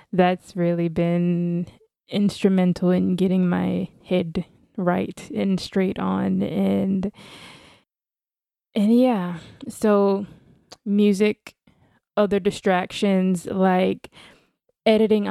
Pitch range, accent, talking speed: 180-200 Hz, American, 80 wpm